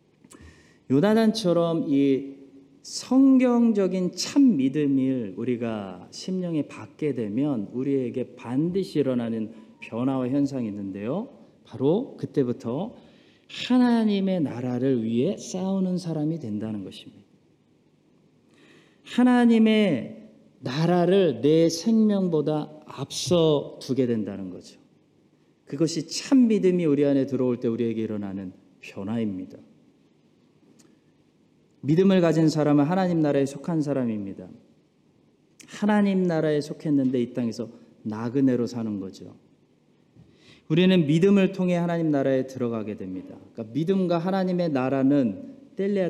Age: 40-59